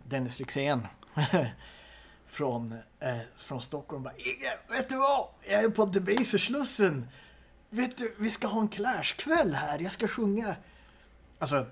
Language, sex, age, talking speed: Swedish, male, 30-49, 130 wpm